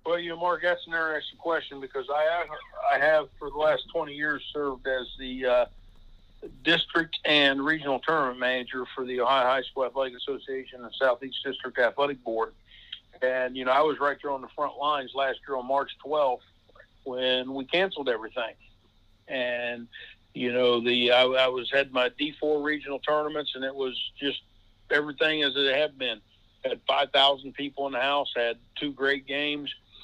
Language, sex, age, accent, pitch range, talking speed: English, male, 50-69, American, 125-150 Hz, 180 wpm